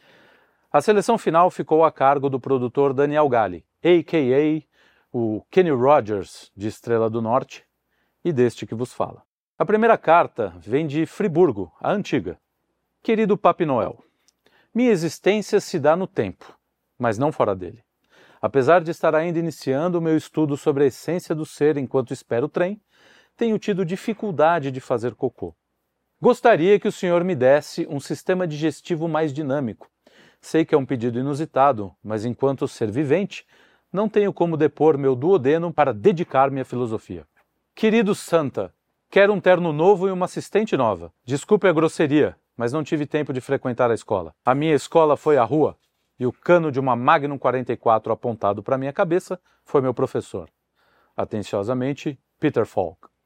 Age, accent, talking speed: 40-59, Brazilian, 160 wpm